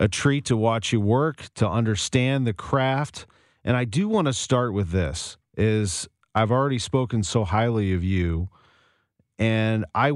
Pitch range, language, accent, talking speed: 100-125 Hz, English, American, 165 wpm